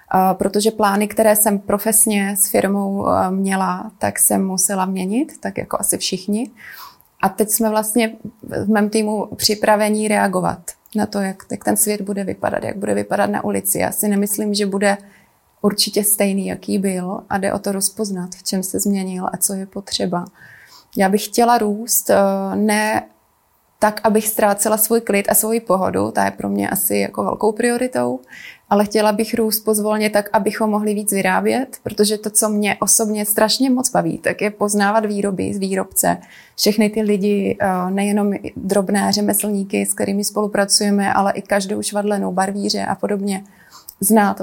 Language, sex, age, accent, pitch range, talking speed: Czech, female, 20-39, native, 190-215 Hz, 165 wpm